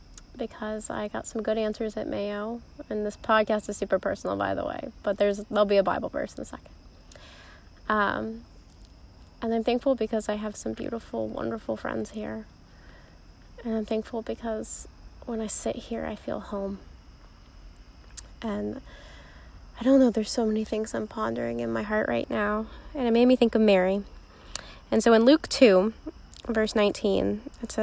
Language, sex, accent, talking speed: English, female, American, 170 wpm